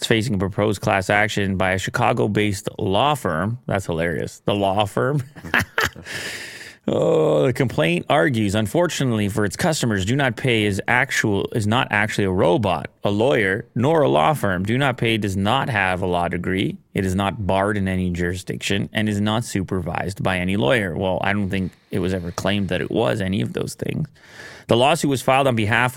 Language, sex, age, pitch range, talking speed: English, male, 30-49, 95-125 Hz, 195 wpm